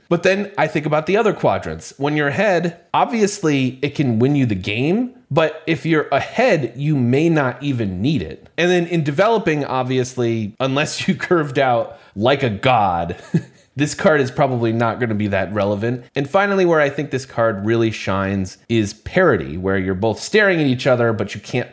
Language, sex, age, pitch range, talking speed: English, male, 30-49, 115-170 Hz, 195 wpm